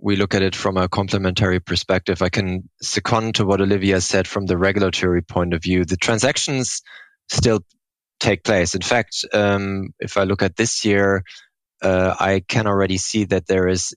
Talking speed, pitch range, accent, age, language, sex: 185 wpm, 90-100 Hz, German, 20-39, English, male